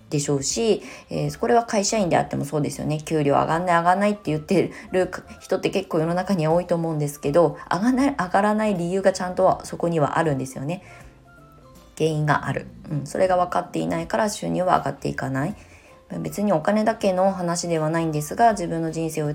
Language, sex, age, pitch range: Japanese, female, 20-39, 145-180 Hz